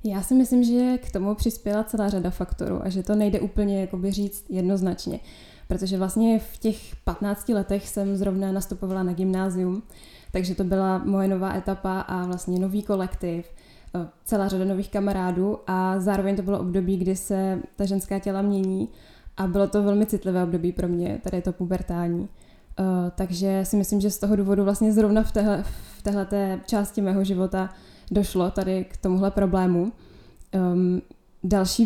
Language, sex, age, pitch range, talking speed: Czech, female, 10-29, 185-200 Hz, 160 wpm